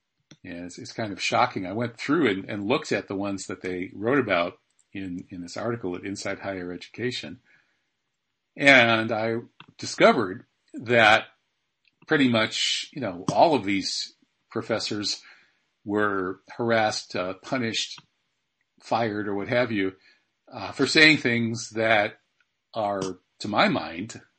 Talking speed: 135 wpm